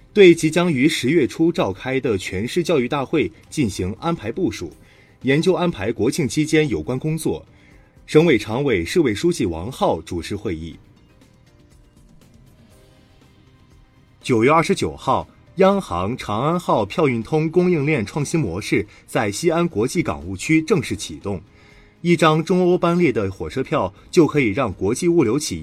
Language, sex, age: Chinese, male, 30-49